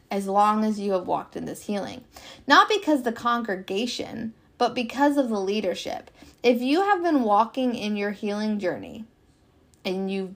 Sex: female